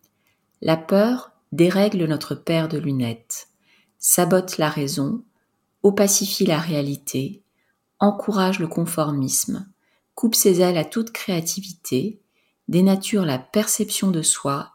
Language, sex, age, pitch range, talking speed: French, female, 40-59, 155-200 Hz, 110 wpm